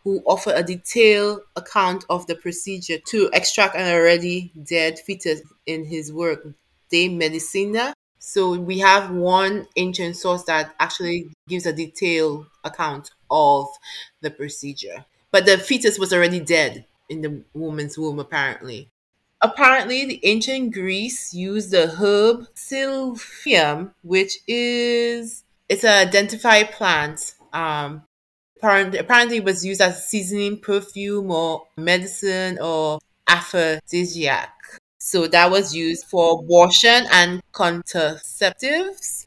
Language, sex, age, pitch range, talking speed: English, female, 20-39, 165-200 Hz, 120 wpm